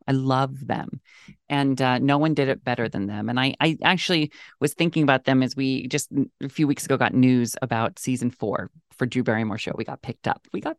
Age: 40-59